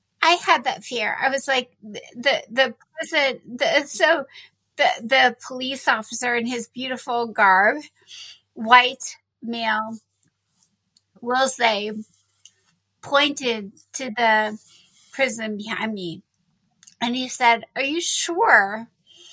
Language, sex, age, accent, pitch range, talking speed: English, female, 30-49, American, 230-280 Hz, 120 wpm